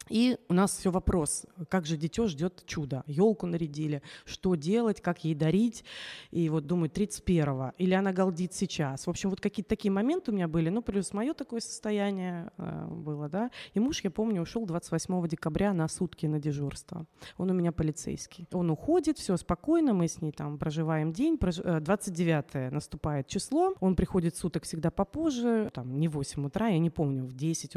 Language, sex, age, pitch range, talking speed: Russian, female, 20-39, 160-210 Hz, 185 wpm